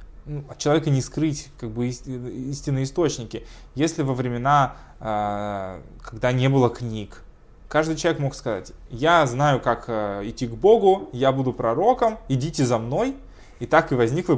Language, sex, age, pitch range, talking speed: Russian, male, 20-39, 115-145 Hz, 140 wpm